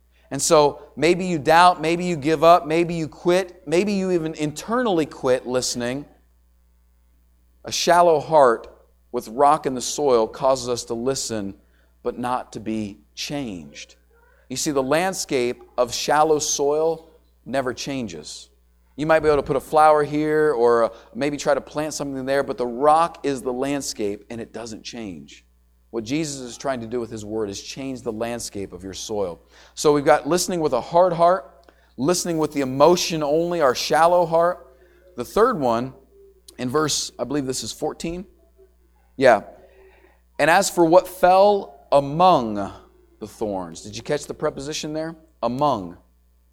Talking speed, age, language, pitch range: 165 wpm, 40-59, English, 110-165 Hz